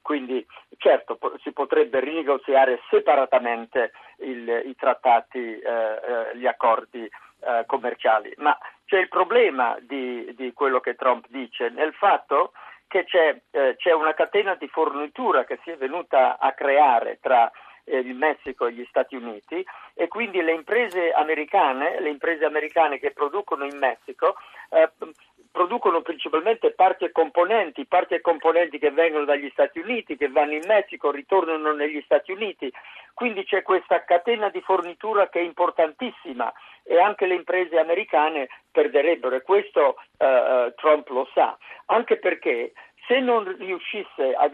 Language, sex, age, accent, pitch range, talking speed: Italian, male, 50-69, native, 140-200 Hz, 150 wpm